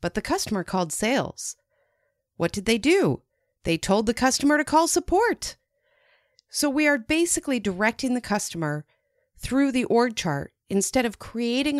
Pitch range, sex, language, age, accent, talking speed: 190-285 Hz, female, English, 40-59, American, 155 wpm